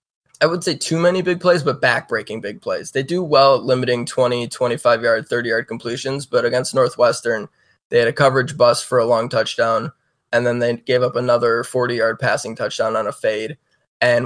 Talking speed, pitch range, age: 200 wpm, 120-135 Hz, 20-39